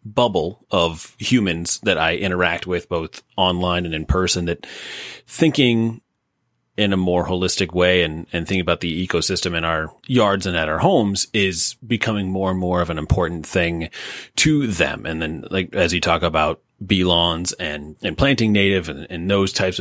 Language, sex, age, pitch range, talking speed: English, male, 30-49, 85-110 Hz, 180 wpm